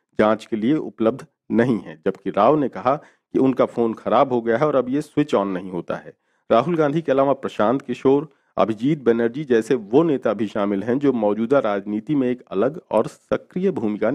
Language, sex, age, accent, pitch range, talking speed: Hindi, male, 50-69, native, 110-145 Hz, 205 wpm